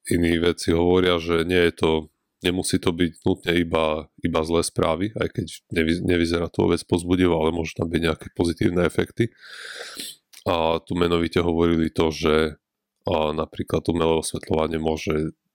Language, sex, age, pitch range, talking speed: Slovak, male, 30-49, 80-85 Hz, 155 wpm